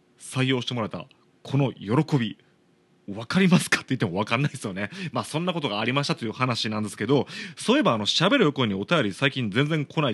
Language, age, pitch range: Japanese, 30-49, 105-150 Hz